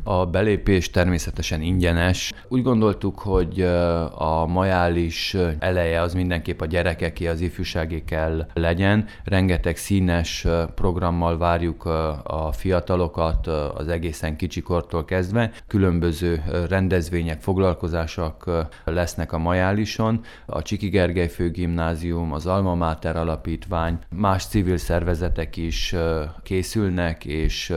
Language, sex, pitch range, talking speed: Hungarian, male, 80-95 Hz, 100 wpm